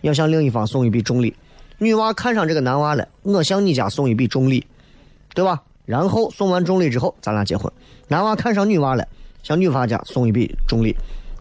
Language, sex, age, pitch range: Chinese, male, 30-49, 125-170 Hz